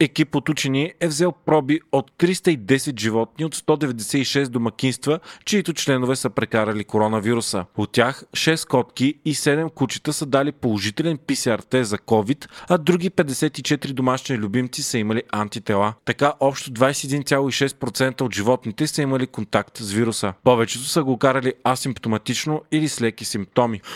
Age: 30-49